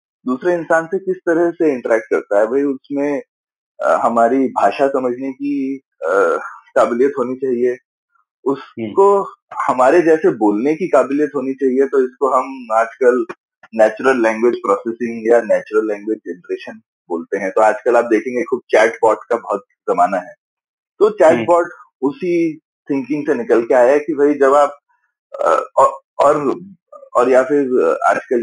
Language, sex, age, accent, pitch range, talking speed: Hindi, male, 20-39, native, 125-205 Hz, 150 wpm